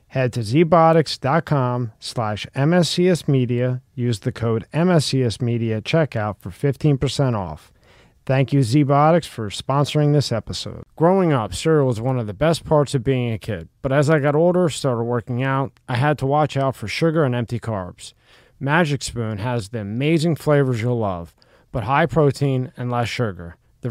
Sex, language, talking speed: male, English, 170 wpm